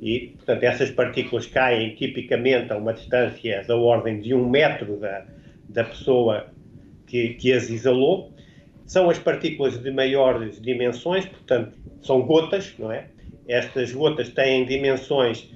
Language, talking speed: Portuguese, 140 wpm